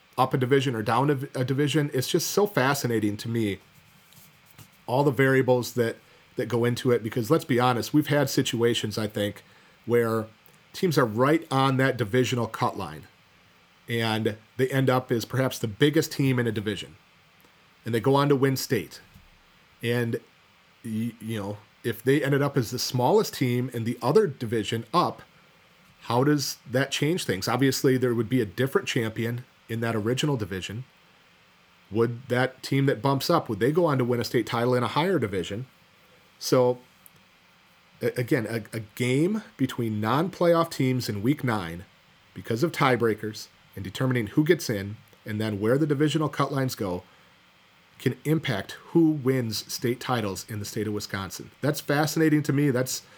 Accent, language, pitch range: American, English, 115-140 Hz